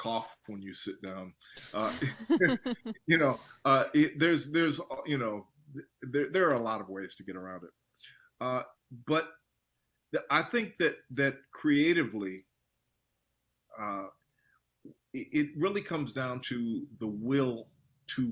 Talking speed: 135 wpm